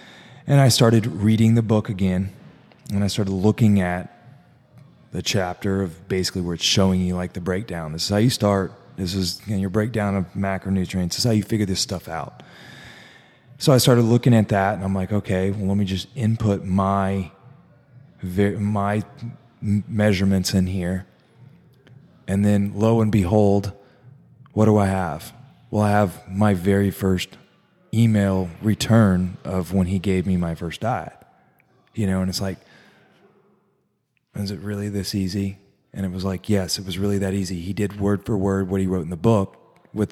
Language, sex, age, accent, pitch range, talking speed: English, male, 20-39, American, 95-115 Hz, 180 wpm